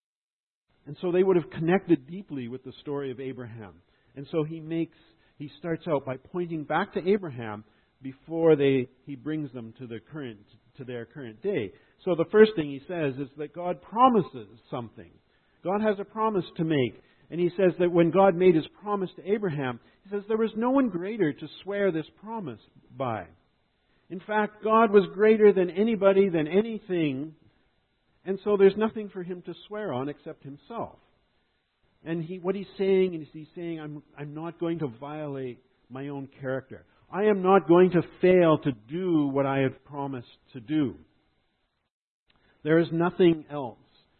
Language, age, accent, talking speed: English, 50-69, American, 180 wpm